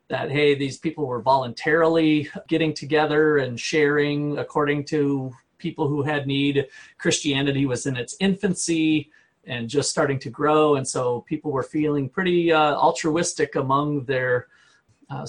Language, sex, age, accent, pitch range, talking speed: English, male, 40-59, American, 135-165 Hz, 145 wpm